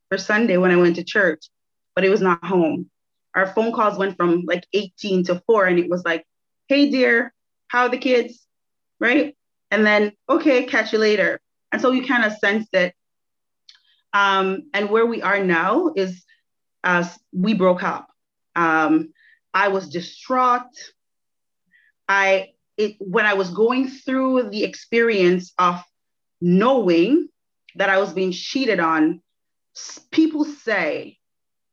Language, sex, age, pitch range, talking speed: English, female, 30-49, 180-235 Hz, 150 wpm